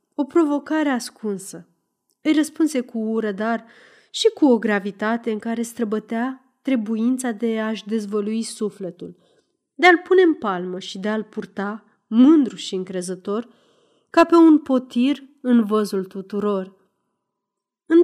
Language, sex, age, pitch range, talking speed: Romanian, female, 30-49, 205-255 Hz, 135 wpm